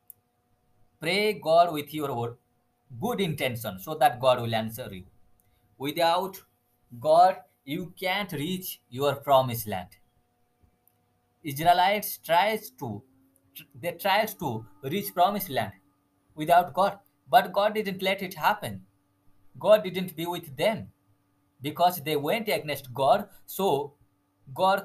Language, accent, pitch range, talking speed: English, Indian, 120-190 Hz, 120 wpm